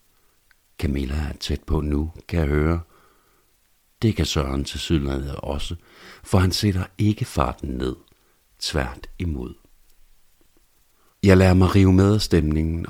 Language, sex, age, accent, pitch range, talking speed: Danish, male, 60-79, native, 75-95 Hz, 130 wpm